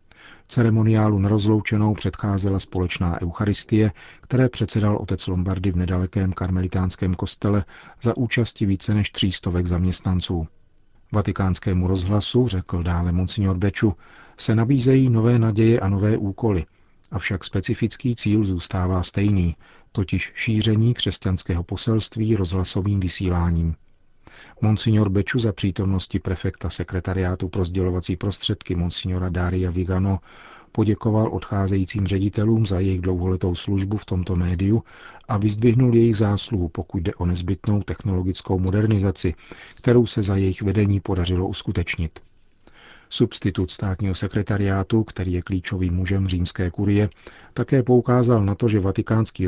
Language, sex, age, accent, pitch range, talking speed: Czech, male, 40-59, native, 90-110 Hz, 120 wpm